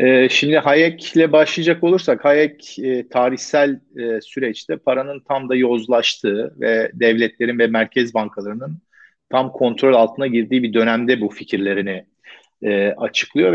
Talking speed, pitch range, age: 115 wpm, 115-135 Hz, 40-59